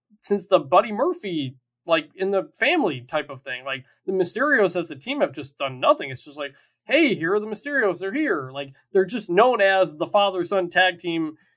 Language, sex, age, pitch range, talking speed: English, male, 20-39, 145-195 Hz, 215 wpm